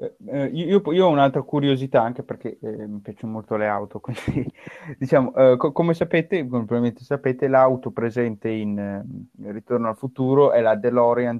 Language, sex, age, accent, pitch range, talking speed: Italian, male, 20-39, native, 110-130 Hz, 180 wpm